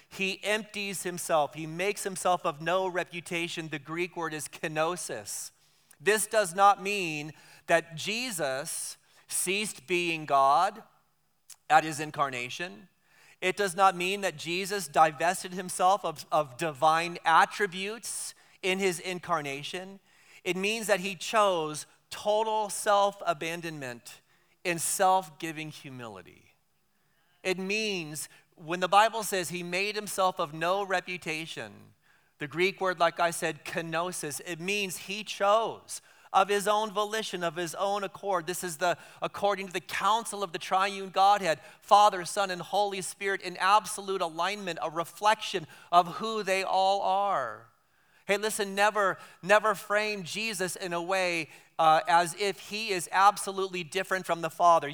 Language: English